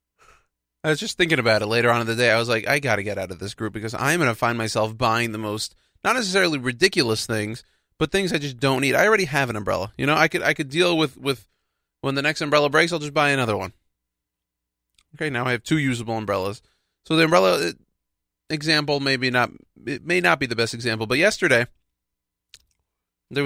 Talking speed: 225 wpm